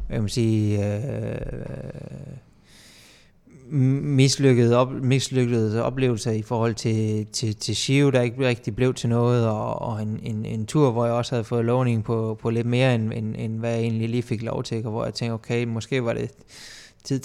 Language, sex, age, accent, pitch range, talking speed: Danish, male, 20-39, native, 115-130 Hz, 180 wpm